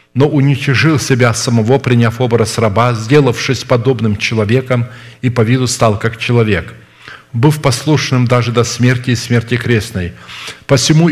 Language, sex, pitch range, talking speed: Russian, male, 110-135 Hz, 135 wpm